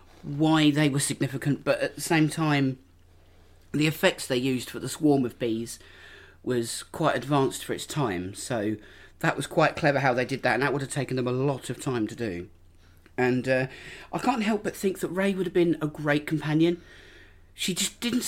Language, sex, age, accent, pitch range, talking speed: English, male, 40-59, British, 125-185 Hz, 205 wpm